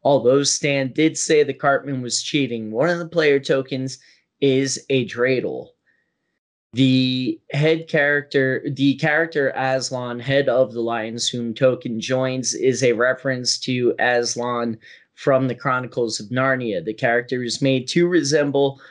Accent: American